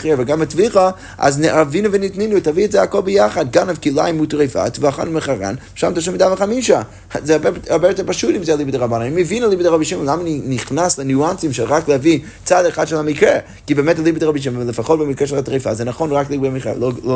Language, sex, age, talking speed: Hebrew, male, 30-49, 190 wpm